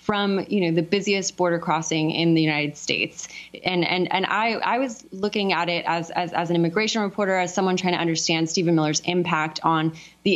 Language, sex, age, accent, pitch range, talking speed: English, female, 20-39, American, 165-195 Hz, 210 wpm